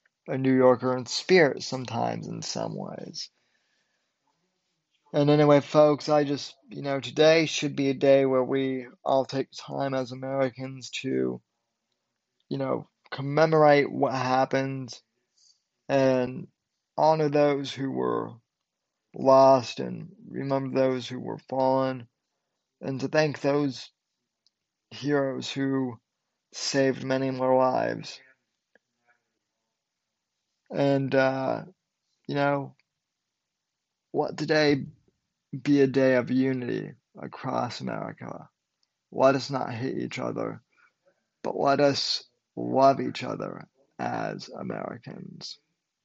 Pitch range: 130-140 Hz